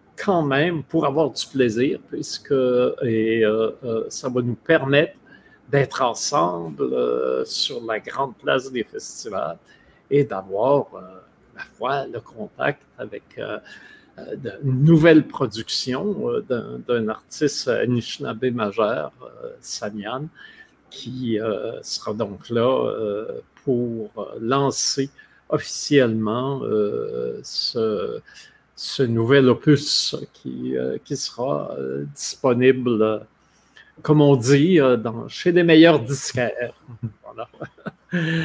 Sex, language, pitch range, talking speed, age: male, French, 115-155 Hz, 110 wpm, 50-69